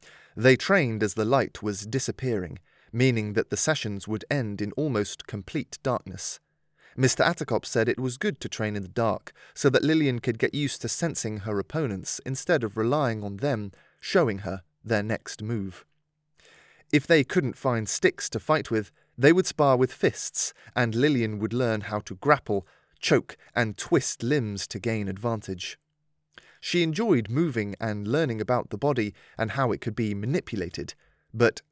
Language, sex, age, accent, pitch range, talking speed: English, male, 30-49, British, 105-140 Hz, 170 wpm